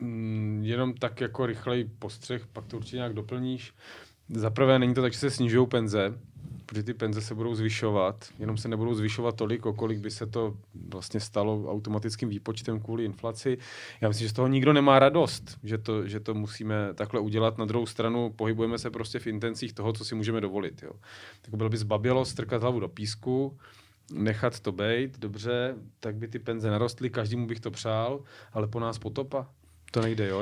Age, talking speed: 30-49, 190 wpm